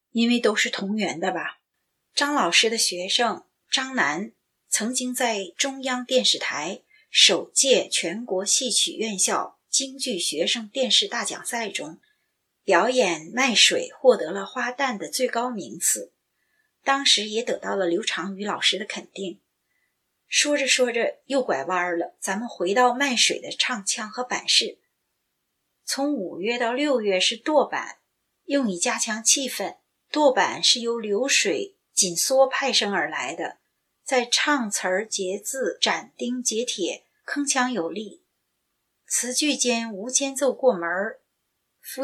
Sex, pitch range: female, 205-265 Hz